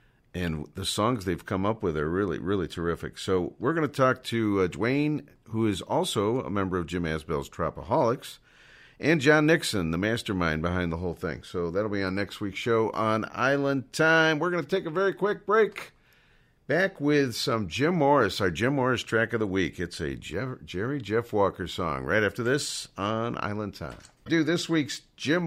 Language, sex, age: English, male, 50-69